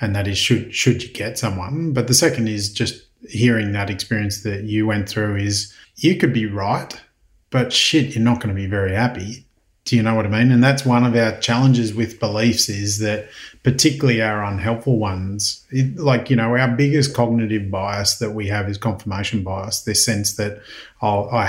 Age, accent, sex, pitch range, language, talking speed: 30-49, Australian, male, 105-120 Hz, English, 200 wpm